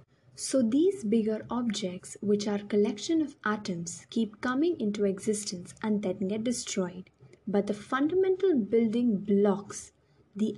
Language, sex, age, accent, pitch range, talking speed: English, female, 20-39, Indian, 185-245 Hz, 130 wpm